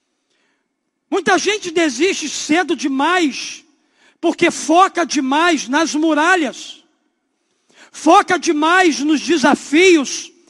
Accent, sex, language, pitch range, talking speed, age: Brazilian, male, Portuguese, 305-360 Hz, 80 wpm, 50-69